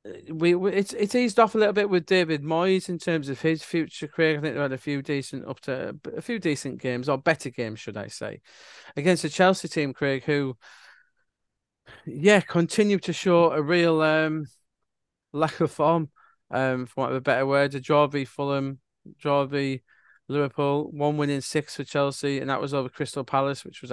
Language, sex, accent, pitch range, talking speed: English, male, British, 135-170 Hz, 205 wpm